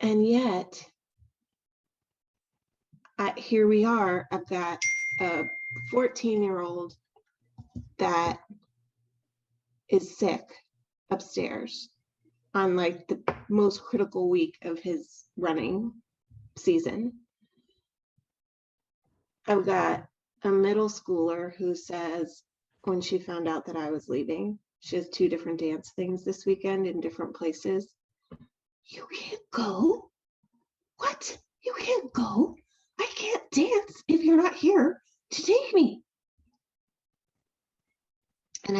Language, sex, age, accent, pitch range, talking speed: English, female, 30-49, American, 175-275 Hz, 105 wpm